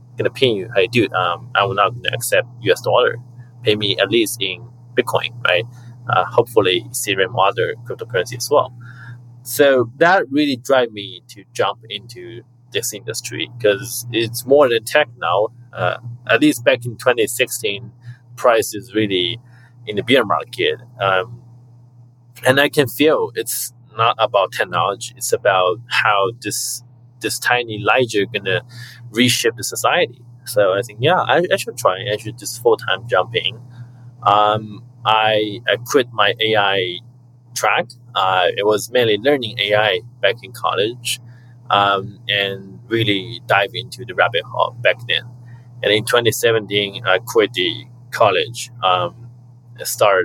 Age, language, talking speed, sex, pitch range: 30-49, English, 150 wpm, male, 110-125 Hz